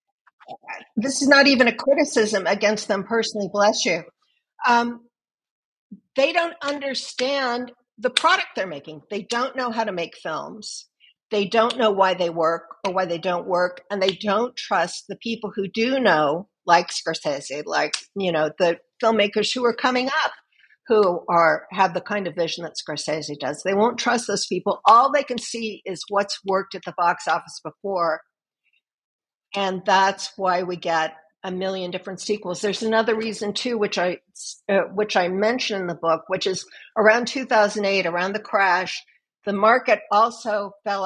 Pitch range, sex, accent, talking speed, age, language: 185-230 Hz, female, American, 170 wpm, 50-69, English